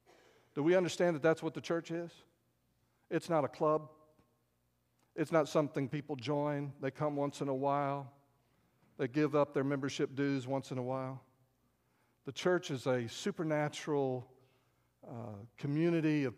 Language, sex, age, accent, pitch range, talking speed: English, male, 50-69, American, 125-170 Hz, 155 wpm